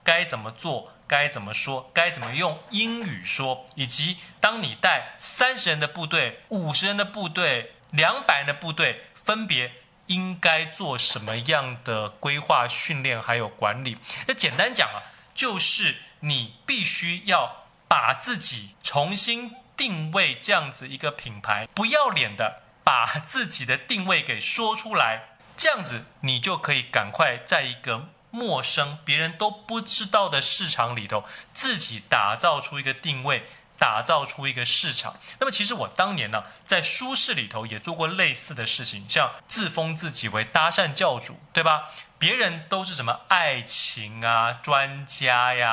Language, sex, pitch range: Chinese, male, 120-180 Hz